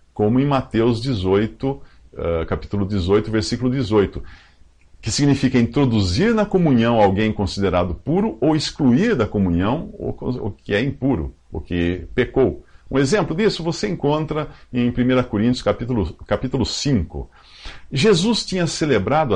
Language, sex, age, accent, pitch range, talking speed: English, male, 50-69, Brazilian, 85-125 Hz, 125 wpm